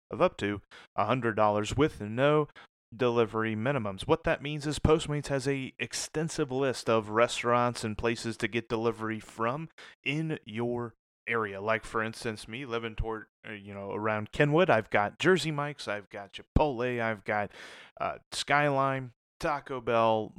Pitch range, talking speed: 110-135 Hz, 150 wpm